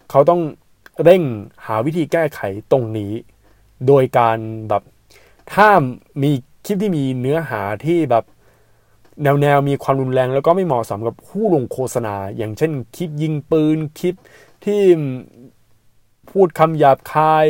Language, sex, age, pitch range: Thai, male, 20-39, 115-155 Hz